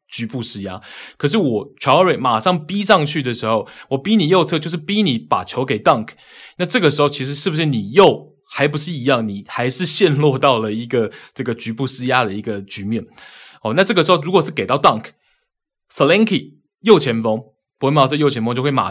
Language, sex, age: Chinese, male, 20-39